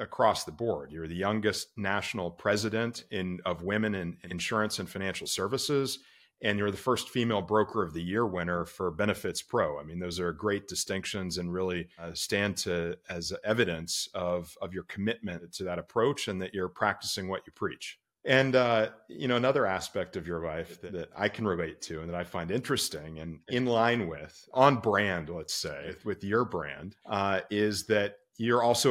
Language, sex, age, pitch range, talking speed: English, male, 40-59, 90-115 Hz, 190 wpm